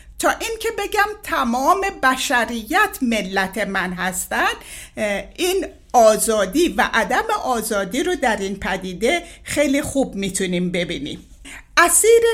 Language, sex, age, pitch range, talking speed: Persian, female, 60-79, 225-360 Hz, 110 wpm